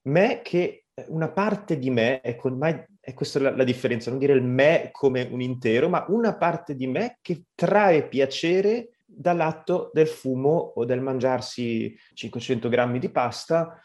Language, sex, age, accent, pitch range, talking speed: Italian, male, 30-49, native, 125-170 Hz, 155 wpm